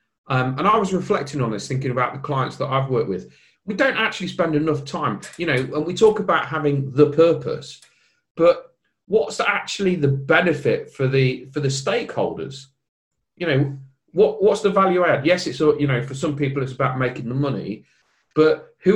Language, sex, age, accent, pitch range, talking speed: English, male, 40-59, British, 125-160 Hz, 195 wpm